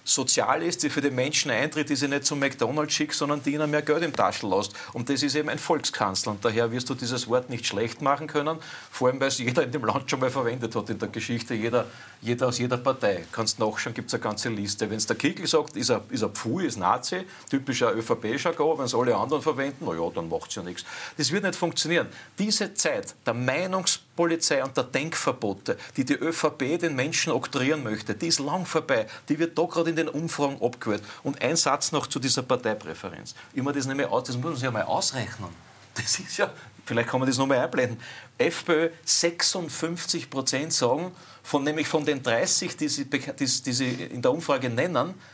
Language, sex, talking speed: German, male, 220 wpm